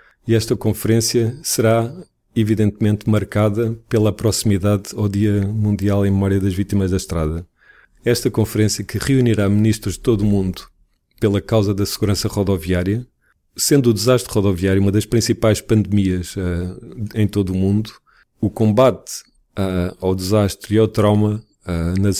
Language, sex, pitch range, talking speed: Portuguese, male, 100-115 Hz, 145 wpm